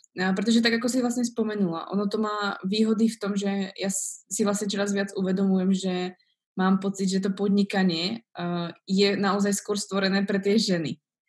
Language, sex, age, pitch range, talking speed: Slovak, female, 20-39, 185-210 Hz, 175 wpm